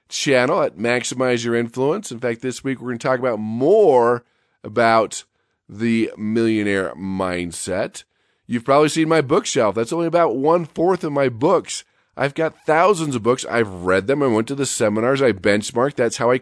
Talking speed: 180 wpm